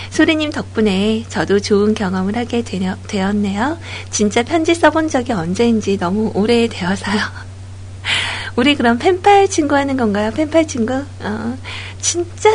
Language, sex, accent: Korean, female, native